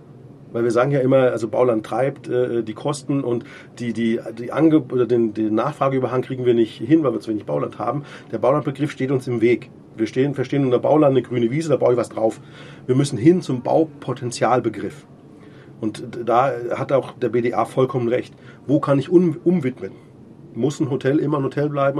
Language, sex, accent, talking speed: German, male, German, 200 wpm